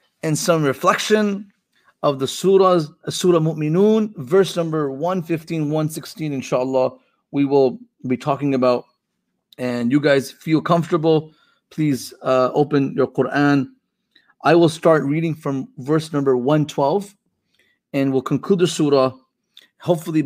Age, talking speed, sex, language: 30-49, 120 wpm, male, English